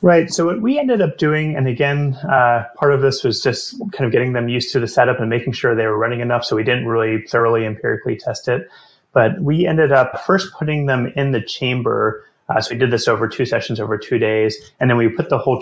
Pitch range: 110-135 Hz